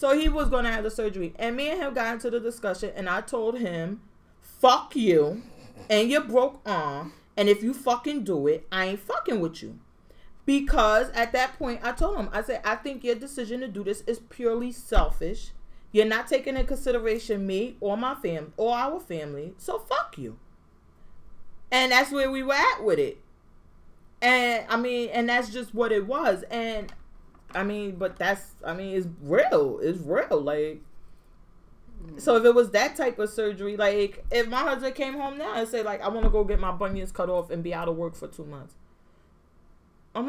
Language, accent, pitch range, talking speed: English, American, 205-280 Hz, 205 wpm